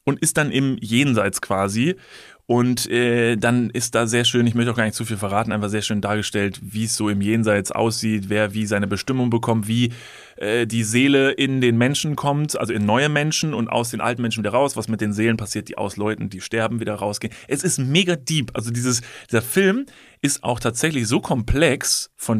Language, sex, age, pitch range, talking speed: German, male, 30-49, 110-135 Hz, 215 wpm